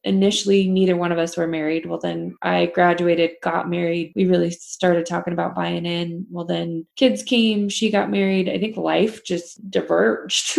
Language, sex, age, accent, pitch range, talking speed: English, female, 20-39, American, 170-200 Hz, 180 wpm